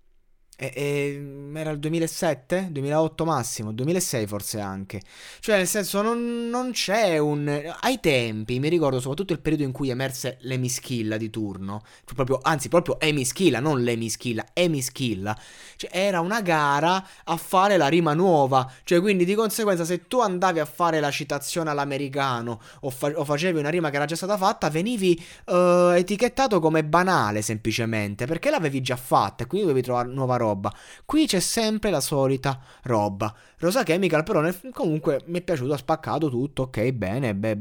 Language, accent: Italian, native